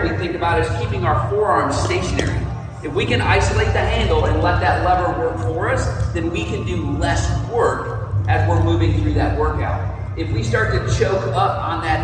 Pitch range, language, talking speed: 110-170 Hz, English, 195 wpm